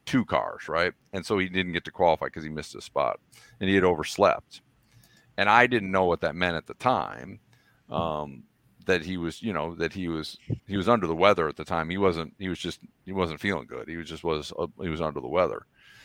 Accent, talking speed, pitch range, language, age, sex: American, 245 wpm, 95-120 Hz, English, 40-59, male